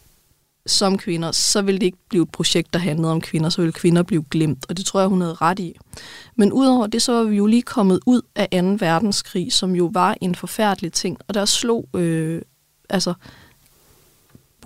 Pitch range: 170-200 Hz